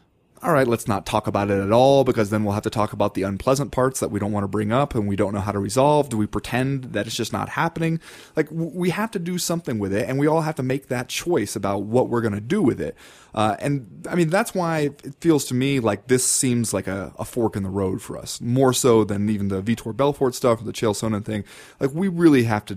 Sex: male